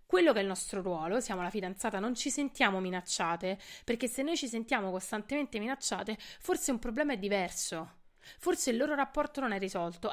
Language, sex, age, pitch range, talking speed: Italian, female, 30-49, 190-260 Hz, 190 wpm